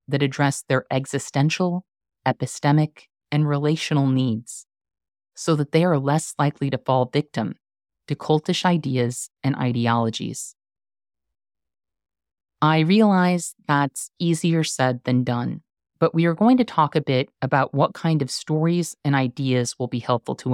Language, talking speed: English, 140 wpm